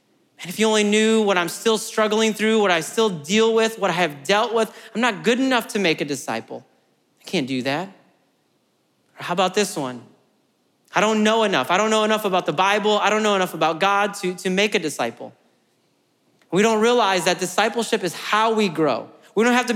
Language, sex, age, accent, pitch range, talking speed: English, male, 30-49, American, 175-220 Hz, 220 wpm